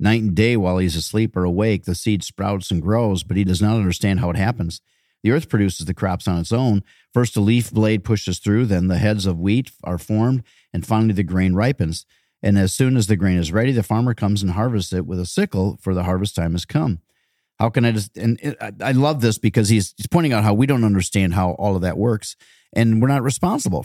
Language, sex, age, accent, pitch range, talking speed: English, male, 50-69, American, 95-120 Hz, 240 wpm